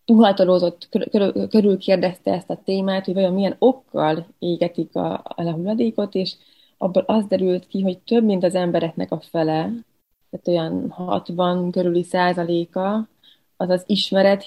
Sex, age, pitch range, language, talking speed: female, 20-39, 170-195 Hz, Hungarian, 145 wpm